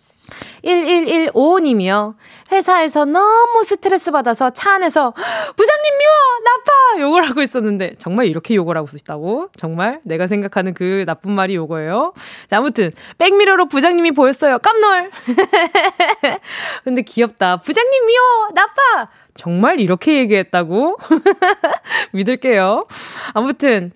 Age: 20-39